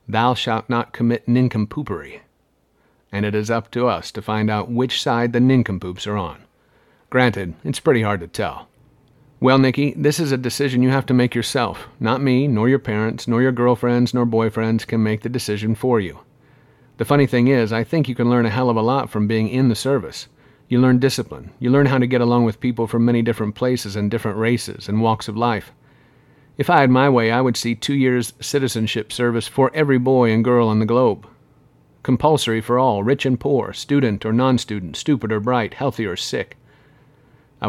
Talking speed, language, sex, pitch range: 205 wpm, English, male, 110-130 Hz